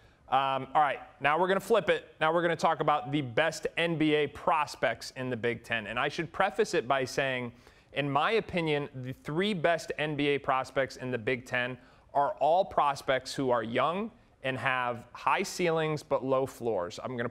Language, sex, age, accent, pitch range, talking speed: English, male, 30-49, American, 130-160 Hz, 200 wpm